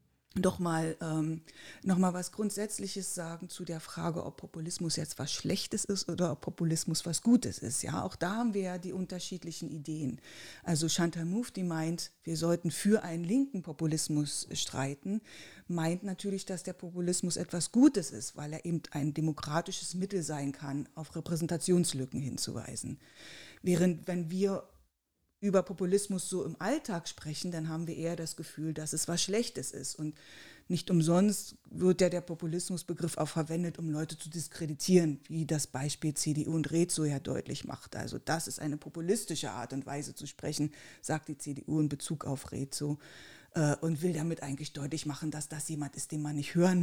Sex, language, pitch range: female, German, 150-180 Hz